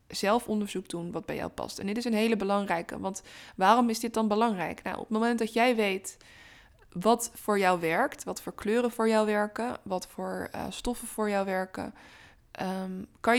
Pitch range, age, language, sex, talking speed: 190-230 Hz, 20-39, Dutch, female, 195 wpm